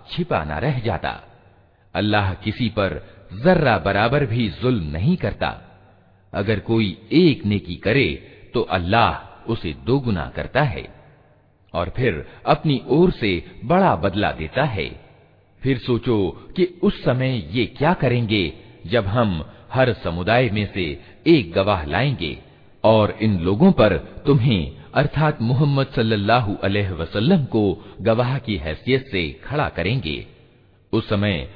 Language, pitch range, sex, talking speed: Hindi, 95-135 Hz, male, 130 wpm